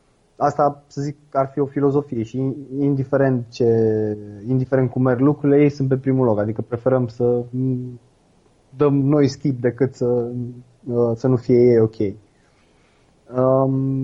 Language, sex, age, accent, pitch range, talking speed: Romanian, male, 20-39, native, 120-145 Hz, 145 wpm